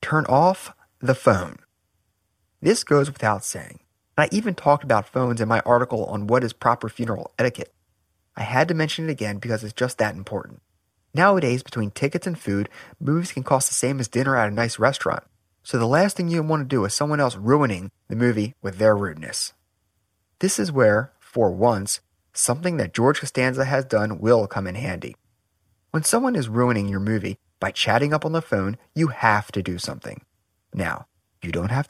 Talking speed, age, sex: 190 wpm, 30-49, male